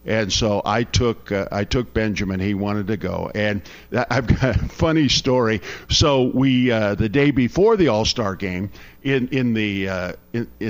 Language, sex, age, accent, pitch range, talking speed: English, male, 50-69, American, 95-125 Hz, 185 wpm